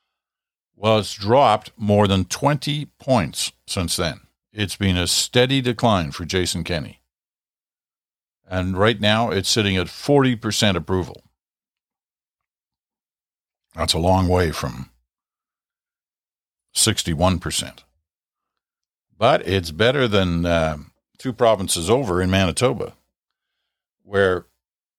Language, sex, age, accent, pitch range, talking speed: English, male, 60-79, American, 85-110 Hz, 100 wpm